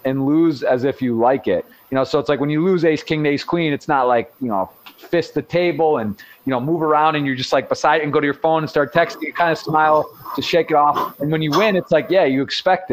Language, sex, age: English, male, 30-49